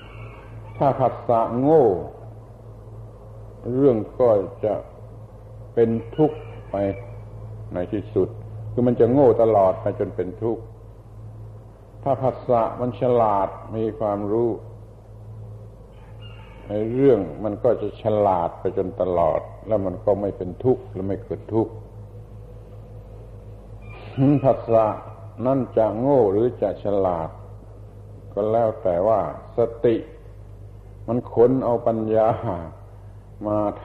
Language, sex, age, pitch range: Thai, male, 60-79, 100-110 Hz